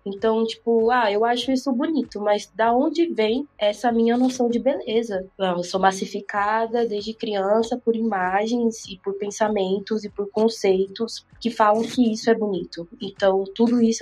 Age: 20-39